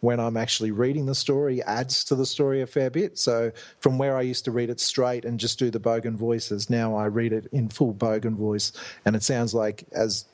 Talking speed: 240 wpm